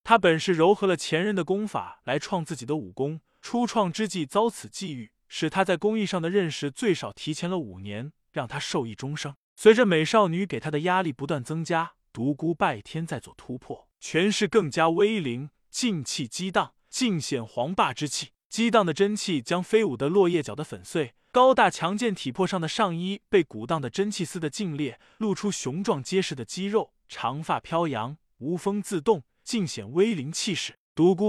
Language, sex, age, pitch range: Chinese, male, 20-39, 145-200 Hz